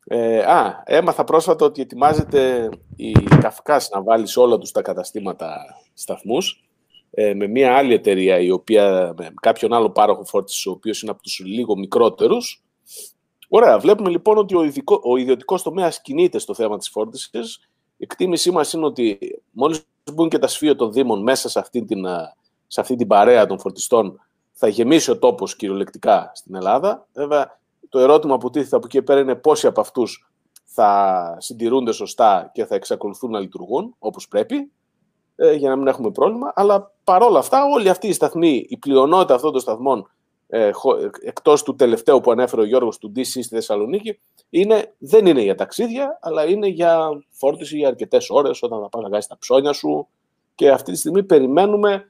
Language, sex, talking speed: Greek, male, 175 wpm